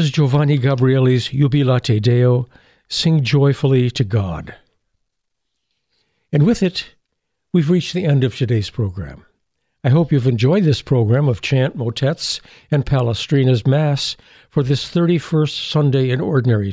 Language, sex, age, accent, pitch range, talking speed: English, male, 60-79, American, 120-160 Hz, 130 wpm